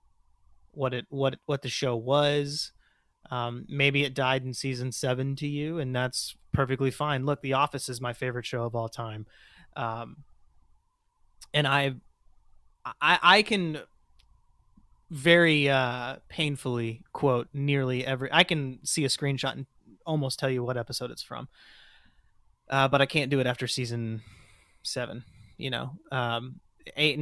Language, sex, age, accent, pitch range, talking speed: English, male, 30-49, American, 125-150 Hz, 150 wpm